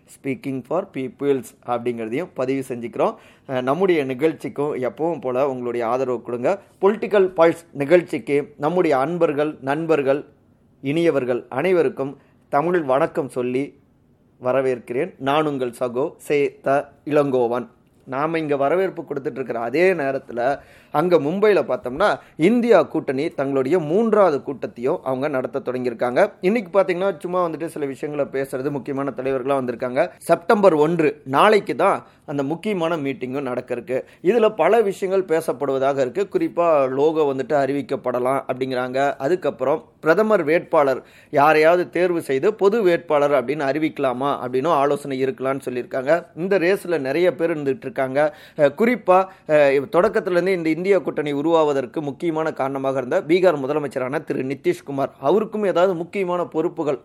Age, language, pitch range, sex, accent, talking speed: 30-49, Tamil, 135-175 Hz, male, native, 115 wpm